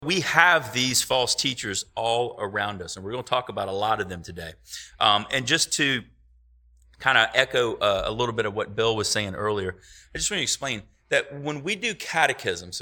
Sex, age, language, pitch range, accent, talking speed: male, 30-49, English, 95-140 Hz, American, 215 wpm